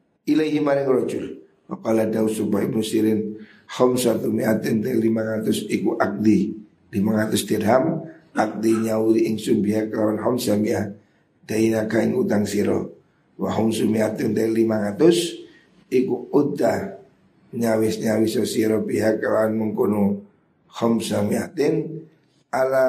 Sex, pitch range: male, 110-120 Hz